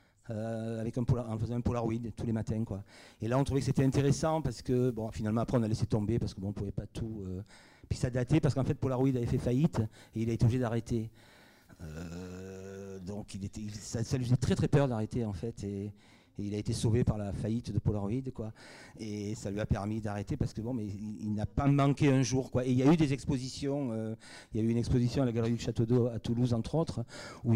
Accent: French